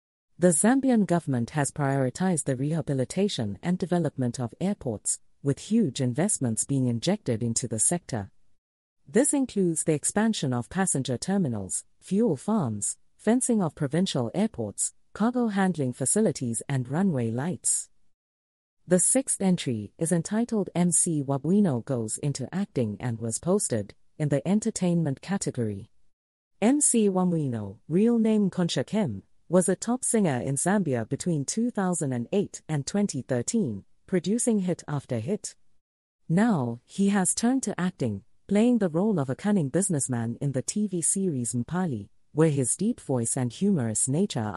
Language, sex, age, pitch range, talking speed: English, female, 40-59, 120-195 Hz, 135 wpm